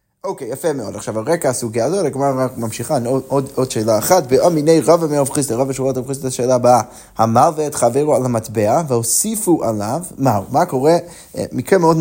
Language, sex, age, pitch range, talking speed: Hebrew, male, 20-39, 125-165 Hz, 195 wpm